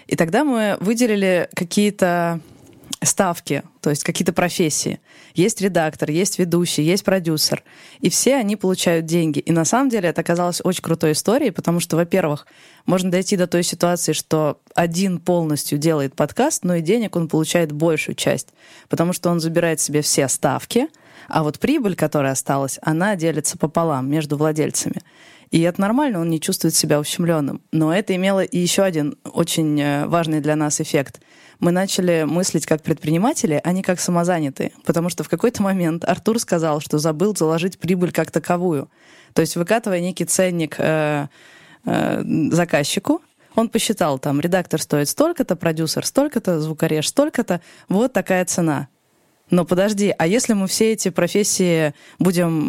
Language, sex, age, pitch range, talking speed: Russian, female, 20-39, 160-185 Hz, 155 wpm